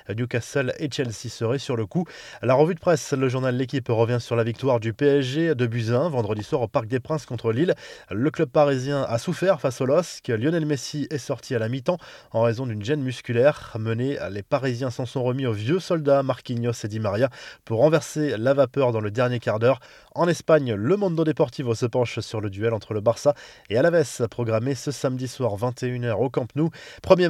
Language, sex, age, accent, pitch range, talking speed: French, male, 20-39, French, 120-145 Hz, 210 wpm